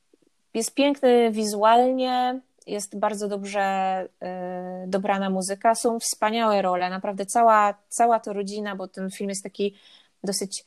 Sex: female